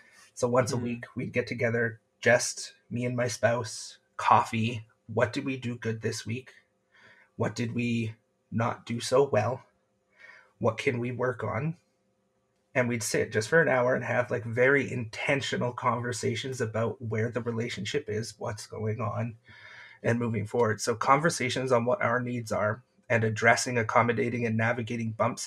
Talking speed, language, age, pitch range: 165 wpm, English, 30-49, 115-125 Hz